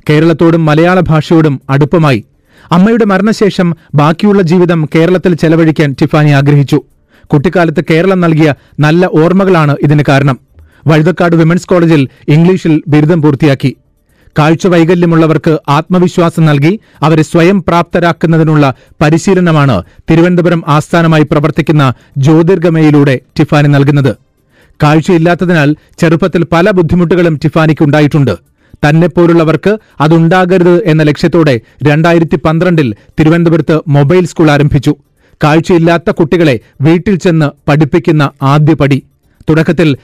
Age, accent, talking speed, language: 40-59, native, 90 wpm, Malayalam